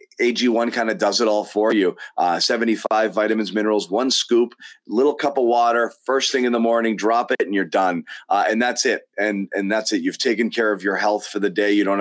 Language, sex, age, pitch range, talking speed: English, male, 30-49, 100-120 Hz, 235 wpm